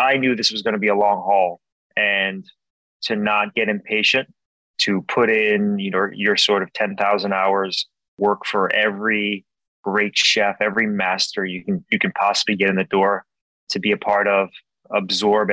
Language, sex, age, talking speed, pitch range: English, male, 20-39, 185 wpm, 100-115 Hz